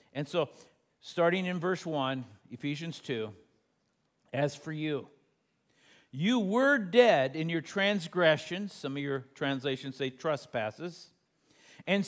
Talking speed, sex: 120 wpm, male